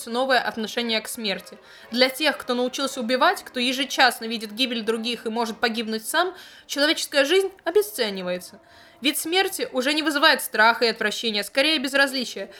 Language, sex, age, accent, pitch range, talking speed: Russian, female, 20-39, native, 225-275 Hz, 150 wpm